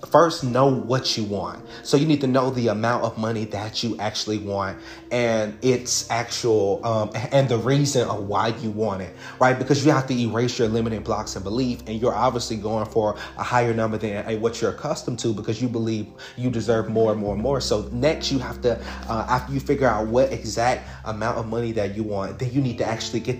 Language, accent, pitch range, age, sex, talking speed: English, American, 110-125 Hz, 30-49, male, 230 wpm